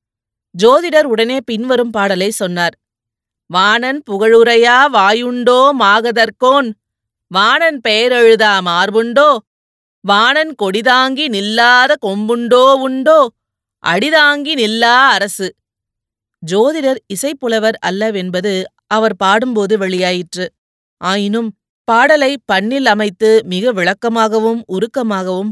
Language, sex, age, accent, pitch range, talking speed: Tamil, female, 30-49, native, 190-255 Hz, 75 wpm